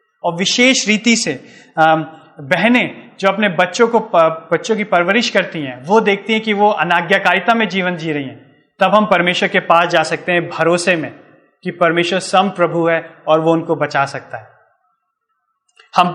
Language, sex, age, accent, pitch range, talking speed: Hindi, male, 30-49, native, 165-220 Hz, 180 wpm